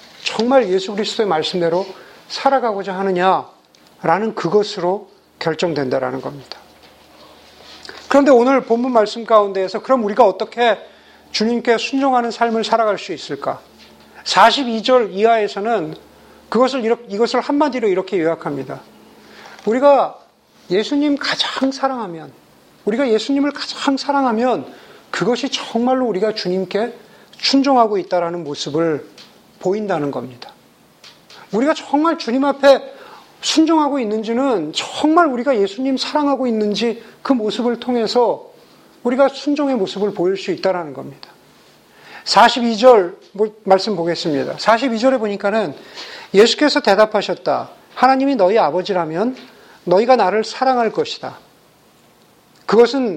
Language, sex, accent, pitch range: Korean, male, native, 195-265 Hz